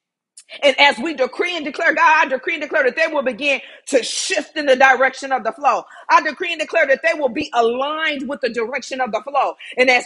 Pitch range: 240-310 Hz